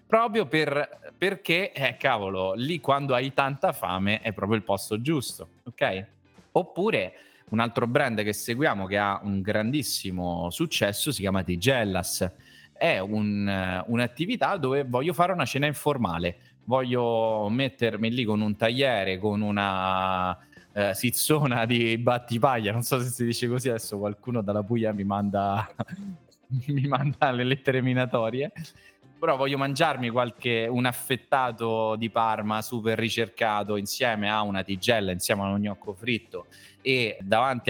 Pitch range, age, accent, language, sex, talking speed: 100-130 Hz, 20-39, native, Italian, male, 140 wpm